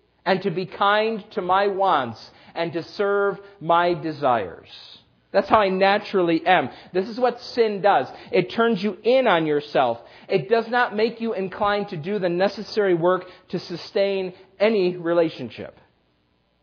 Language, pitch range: English, 155-205 Hz